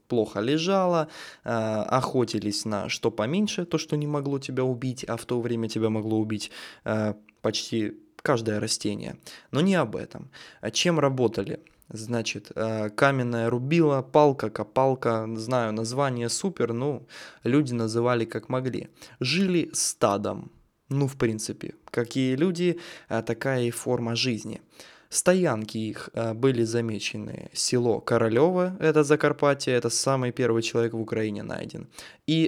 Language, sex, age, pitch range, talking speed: Russian, male, 20-39, 115-145 Hz, 125 wpm